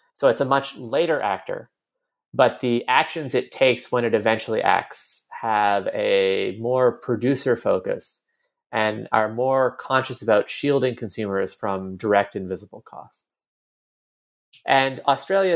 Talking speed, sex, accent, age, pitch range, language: 125 wpm, male, American, 30-49, 105-150 Hz, English